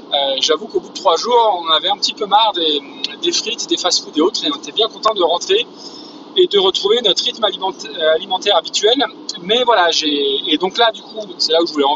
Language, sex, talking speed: French, male, 245 wpm